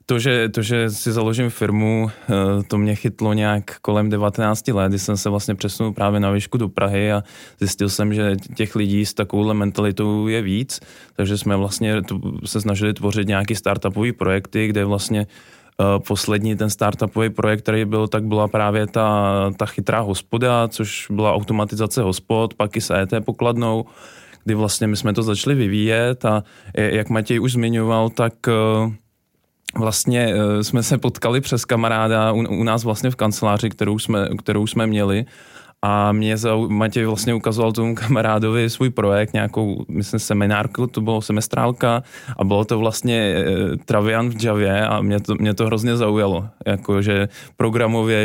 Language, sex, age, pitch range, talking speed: Czech, male, 20-39, 105-115 Hz, 165 wpm